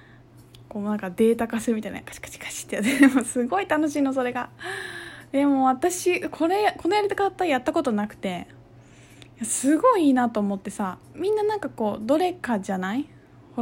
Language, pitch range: Japanese, 195-295 Hz